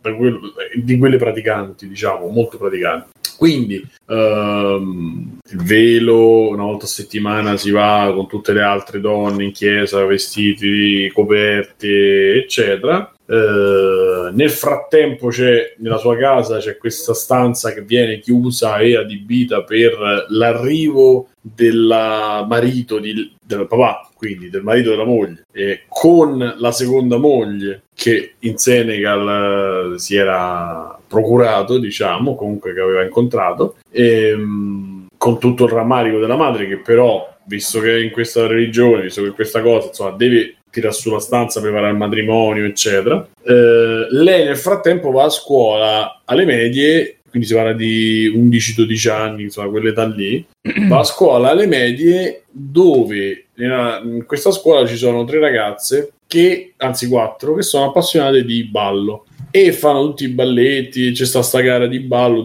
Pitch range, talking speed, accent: 105-125 Hz, 140 wpm, native